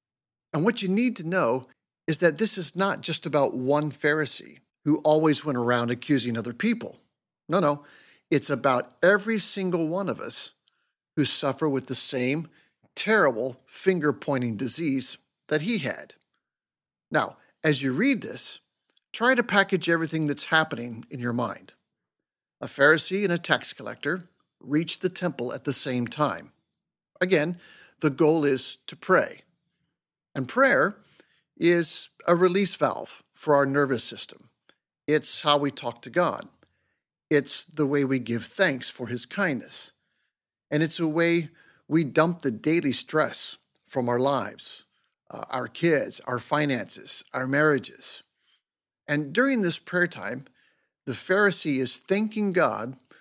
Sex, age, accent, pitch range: male, 50-69, American, 135-180 Hz